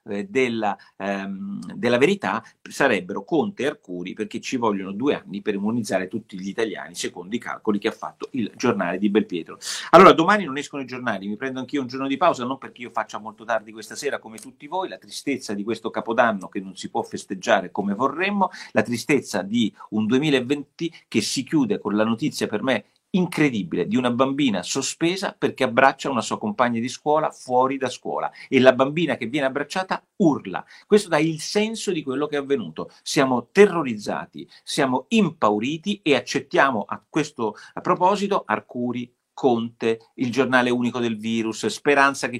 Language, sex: Italian, male